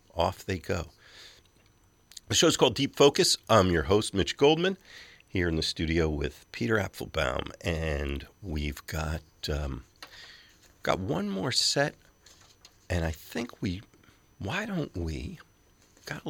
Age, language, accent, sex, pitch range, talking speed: 50-69, English, American, male, 80-100 Hz, 135 wpm